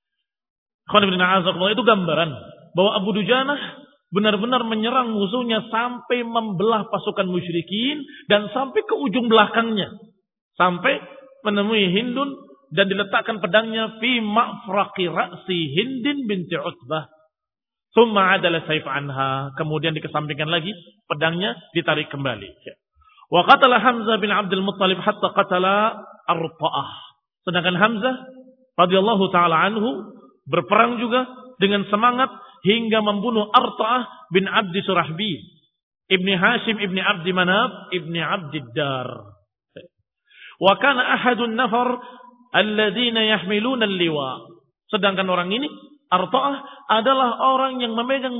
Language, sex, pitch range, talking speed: Indonesian, male, 180-235 Hz, 110 wpm